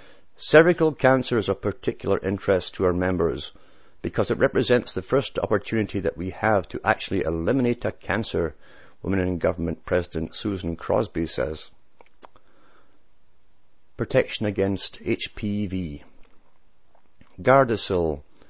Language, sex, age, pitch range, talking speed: English, male, 50-69, 85-110 Hz, 110 wpm